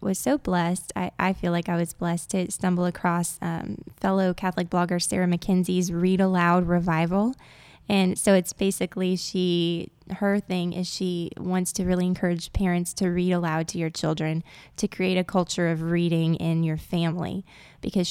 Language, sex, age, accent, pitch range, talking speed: English, female, 10-29, American, 170-190 Hz, 170 wpm